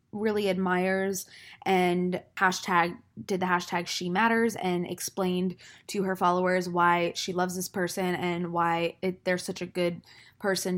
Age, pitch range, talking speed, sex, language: 20-39, 180-205 Hz, 145 wpm, female, English